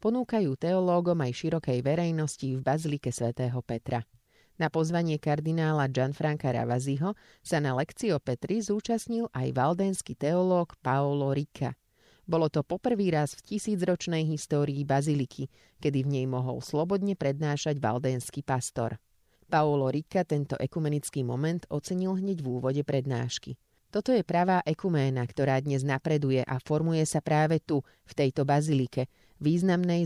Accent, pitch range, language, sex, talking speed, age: Czech, 130-170 Hz, English, female, 135 wpm, 30-49